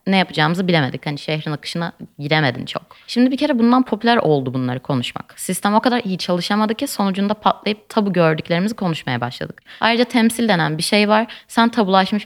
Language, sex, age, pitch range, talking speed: Turkish, female, 20-39, 160-215 Hz, 175 wpm